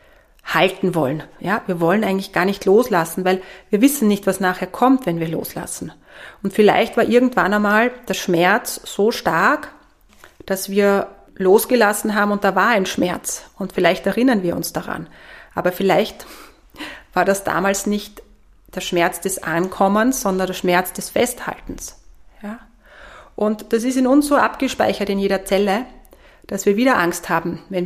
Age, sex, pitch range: 30-49, female, 180-215 Hz